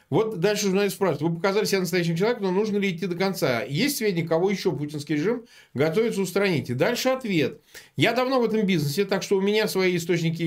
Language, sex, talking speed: Russian, male, 210 wpm